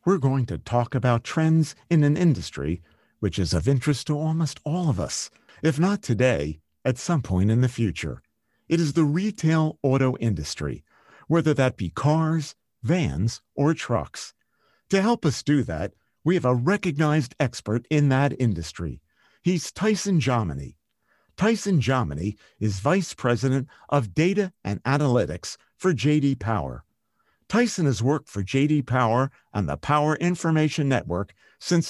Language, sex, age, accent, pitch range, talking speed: English, male, 50-69, American, 115-170 Hz, 150 wpm